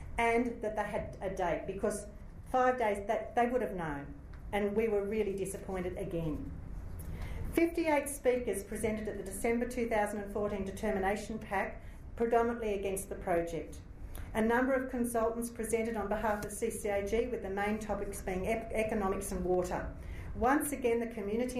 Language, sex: English, female